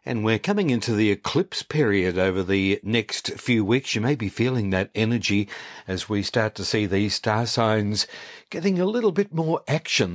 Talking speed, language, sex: 190 wpm, English, male